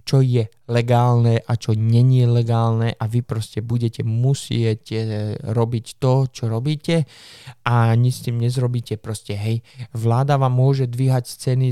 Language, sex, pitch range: Slovak, male, 115-130 Hz